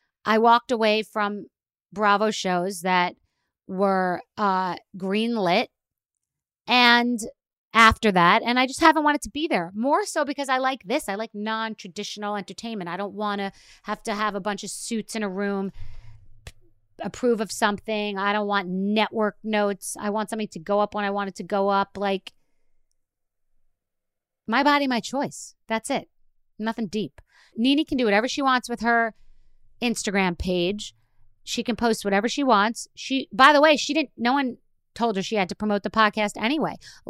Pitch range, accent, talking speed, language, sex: 190-235 Hz, American, 180 wpm, English, female